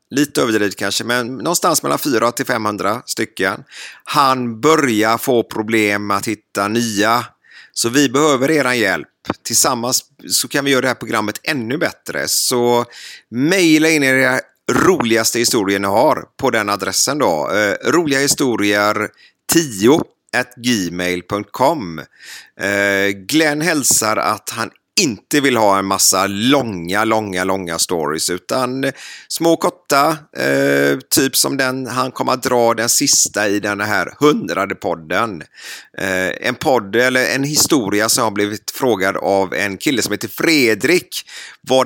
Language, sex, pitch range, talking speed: Swedish, male, 100-130 Hz, 140 wpm